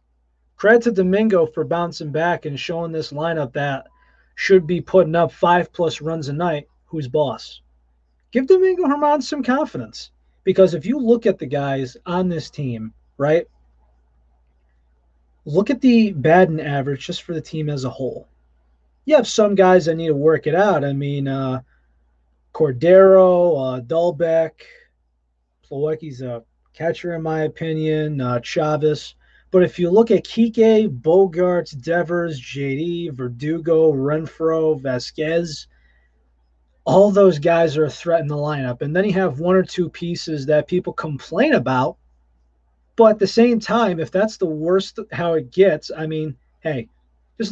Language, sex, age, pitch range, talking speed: English, male, 20-39, 120-175 Hz, 155 wpm